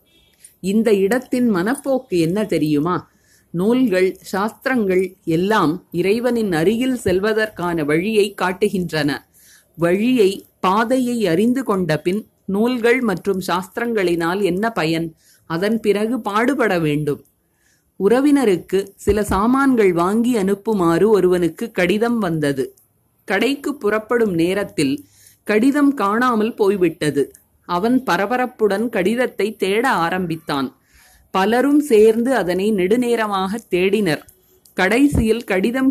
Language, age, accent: Tamil, 30-49, native